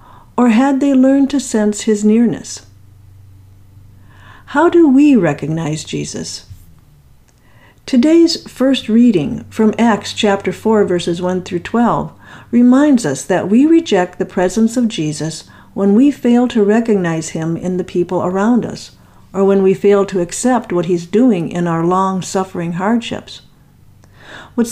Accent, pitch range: American, 170-230 Hz